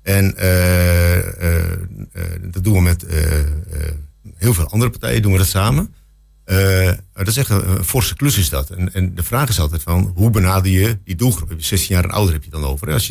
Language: Dutch